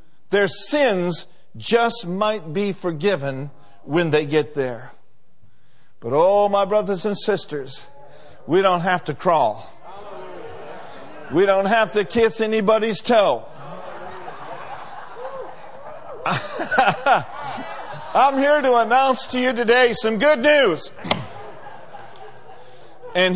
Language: English